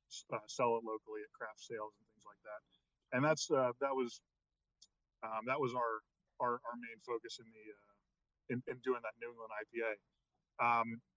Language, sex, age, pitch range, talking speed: English, male, 20-39, 110-130 Hz, 190 wpm